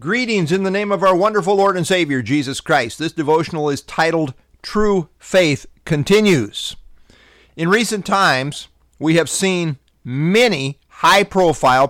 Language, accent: English, American